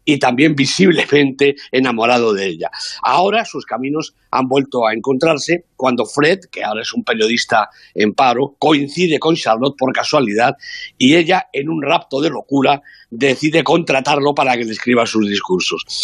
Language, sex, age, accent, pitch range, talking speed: Spanish, male, 50-69, Spanish, 125-155 Hz, 155 wpm